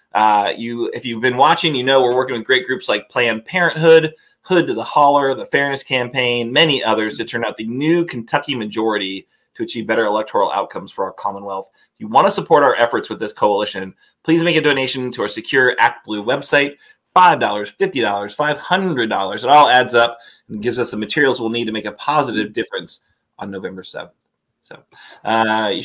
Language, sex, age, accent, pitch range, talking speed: English, male, 30-49, American, 115-145 Hz, 195 wpm